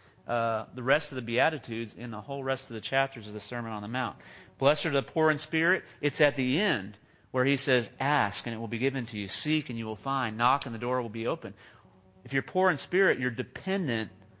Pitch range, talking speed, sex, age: 115-150 Hz, 245 wpm, male, 40-59